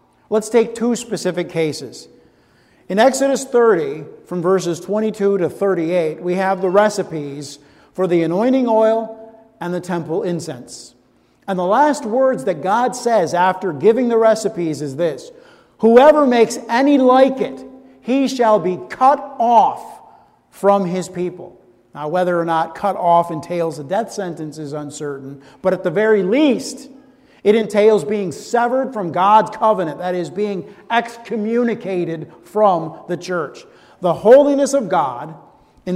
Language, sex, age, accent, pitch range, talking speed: English, male, 50-69, American, 180-250 Hz, 145 wpm